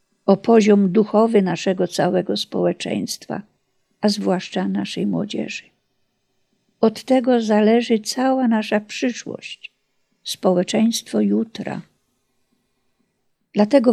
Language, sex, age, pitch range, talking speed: Polish, female, 50-69, 190-230 Hz, 80 wpm